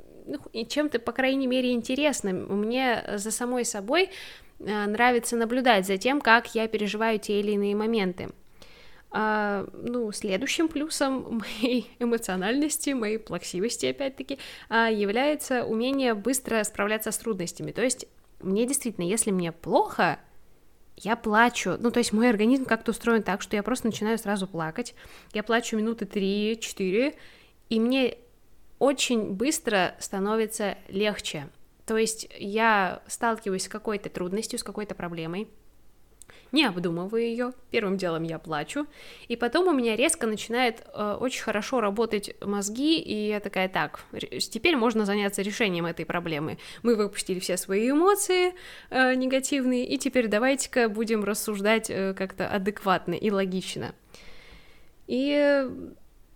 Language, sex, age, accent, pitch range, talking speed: Russian, female, 10-29, native, 205-250 Hz, 135 wpm